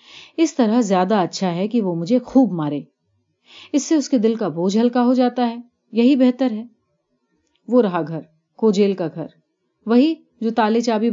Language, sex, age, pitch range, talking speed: Urdu, female, 30-49, 175-230 Hz, 175 wpm